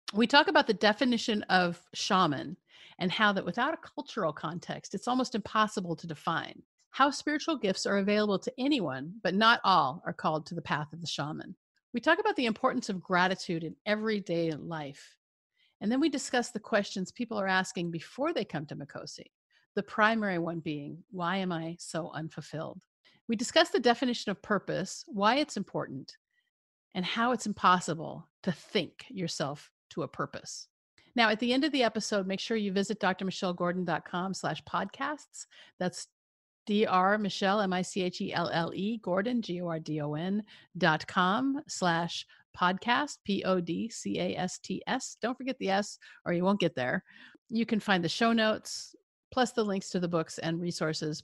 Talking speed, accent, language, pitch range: 155 wpm, American, English, 175-230 Hz